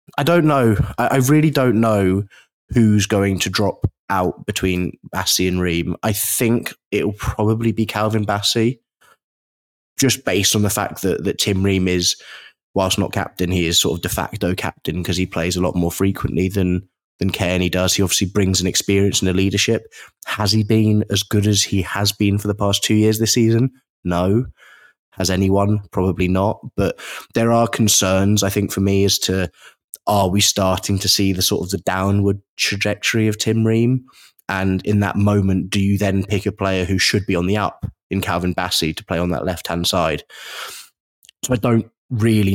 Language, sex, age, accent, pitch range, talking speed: English, male, 20-39, British, 95-110 Hz, 195 wpm